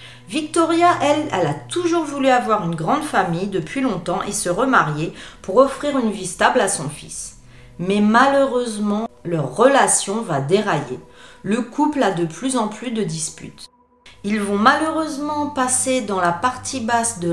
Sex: female